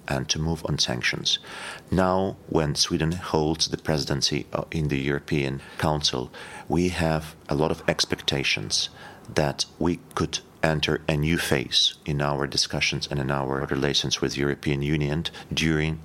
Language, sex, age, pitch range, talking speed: English, male, 40-59, 70-85 Hz, 145 wpm